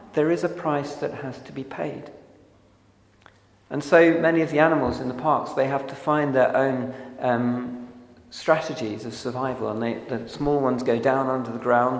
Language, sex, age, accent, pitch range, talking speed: English, male, 40-59, British, 115-145 Hz, 185 wpm